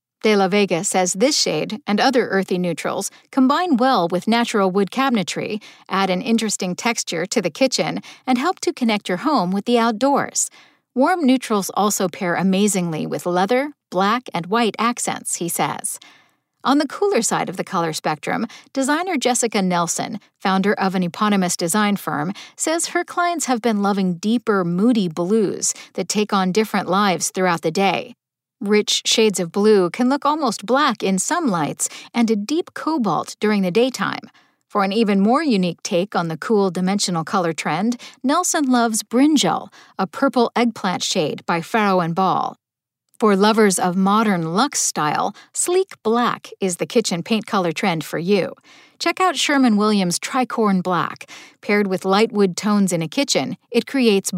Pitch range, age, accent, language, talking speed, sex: 190-250 Hz, 50-69, American, English, 165 wpm, female